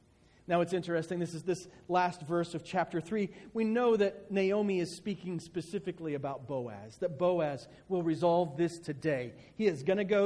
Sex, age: male, 40-59